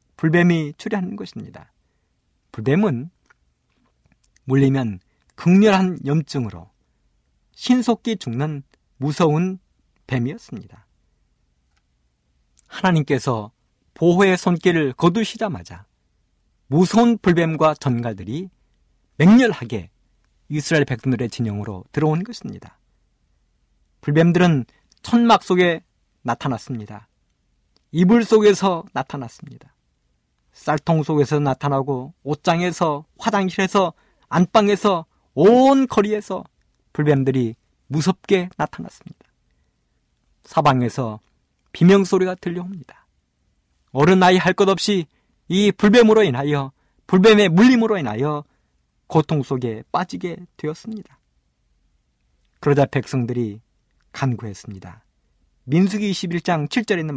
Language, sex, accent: Korean, male, native